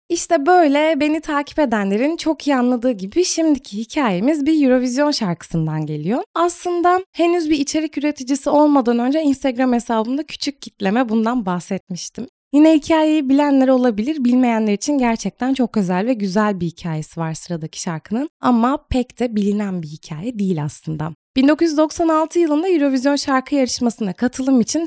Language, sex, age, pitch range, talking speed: Turkish, female, 20-39, 210-295 Hz, 140 wpm